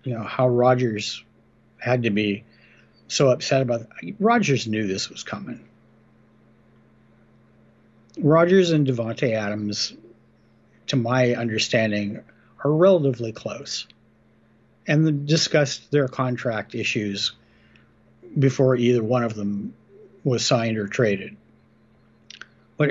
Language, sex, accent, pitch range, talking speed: English, male, American, 115-145 Hz, 105 wpm